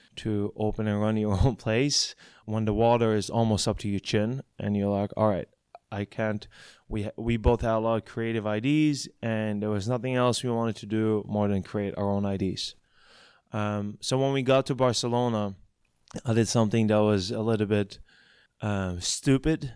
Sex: male